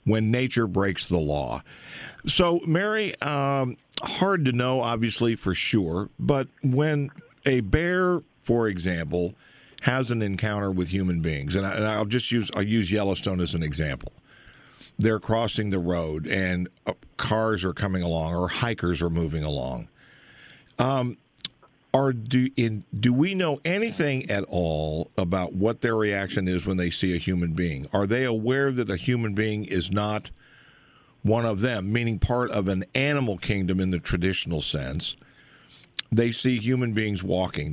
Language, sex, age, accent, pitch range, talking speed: English, male, 50-69, American, 90-125 Hz, 160 wpm